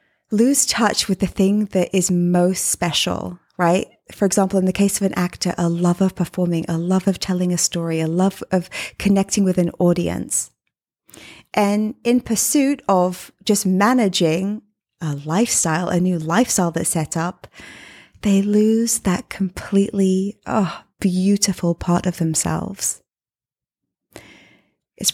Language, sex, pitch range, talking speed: English, female, 175-210 Hz, 140 wpm